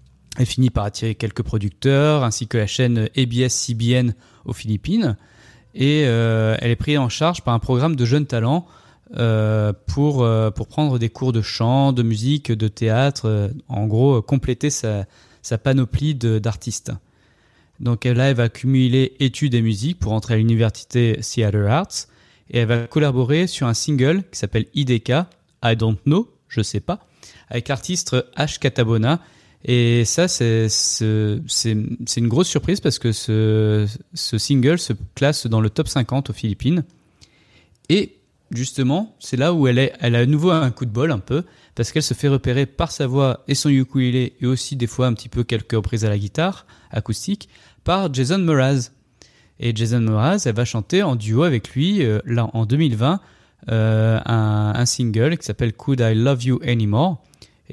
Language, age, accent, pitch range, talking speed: French, 20-39, French, 110-140 Hz, 185 wpm